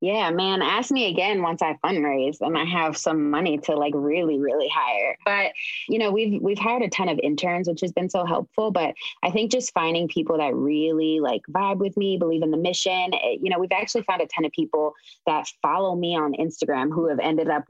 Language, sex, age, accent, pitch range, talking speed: English, female, 20-39, American, 155-200 Hz, 230 wpm